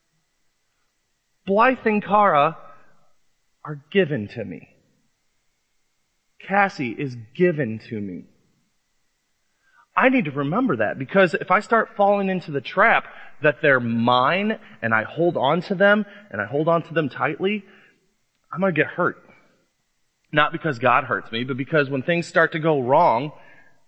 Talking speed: 150 wpm